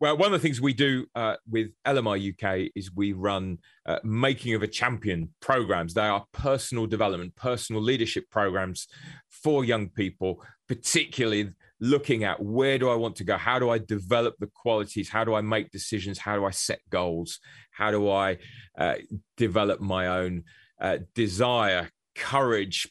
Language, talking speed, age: English, 170 wpm, 30-49